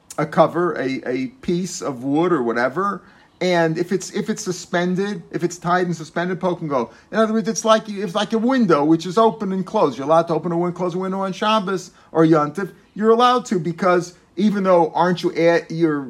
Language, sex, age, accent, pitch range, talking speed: English, male, 50-69, American, 155-190 Hz, 225 wpm